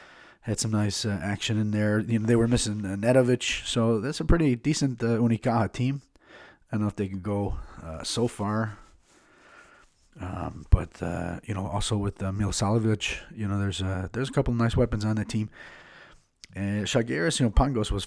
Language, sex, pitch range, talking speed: English, male, 95-115 Hz, 205 wpm